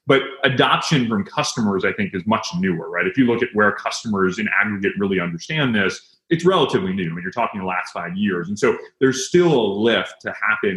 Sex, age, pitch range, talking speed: male, 30-49, 110-145 Hz, 225 wpm